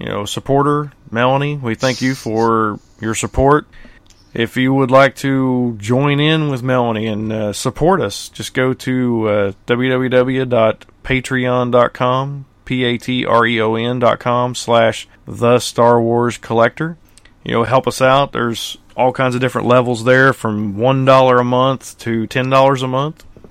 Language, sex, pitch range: English, male, 115-135 Hz